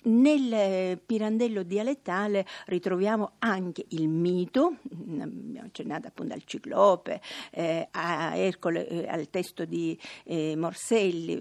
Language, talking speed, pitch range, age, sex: Italian, 110 wpm, 175-220 Hz, 50-69, female